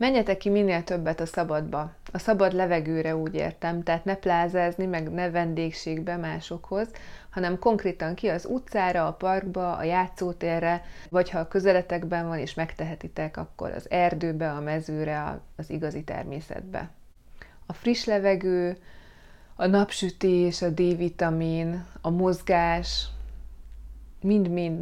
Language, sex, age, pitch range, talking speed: Hungarian, female, 30-49, 160-180 Hz, 125 wpm